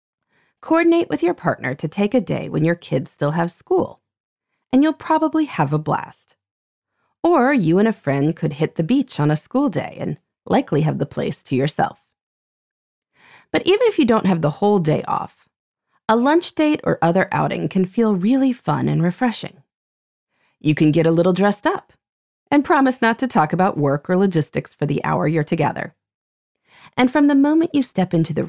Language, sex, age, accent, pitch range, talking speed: English, female, 30-49, American, 155-245 Hz, 190 wpm